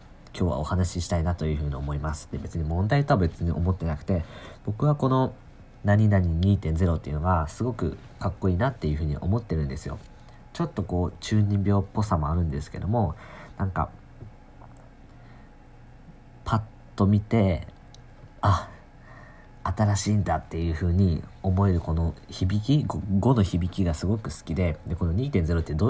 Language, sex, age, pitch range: Japanese, male, 40-59, 80-110 Hz